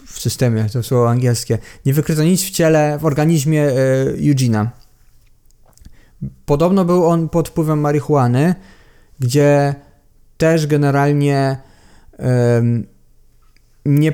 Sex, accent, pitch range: male, native, 120-145 Hz